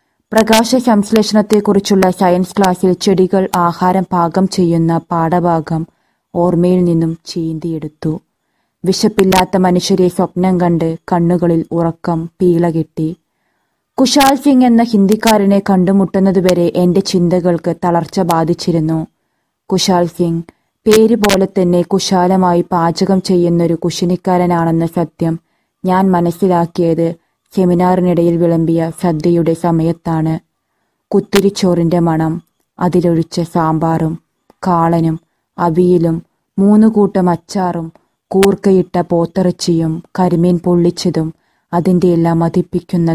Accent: native